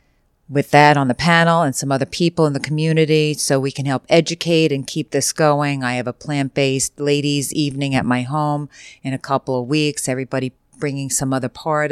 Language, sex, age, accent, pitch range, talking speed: English, female, 40-59, American, 135-165 Hz, 200 wpm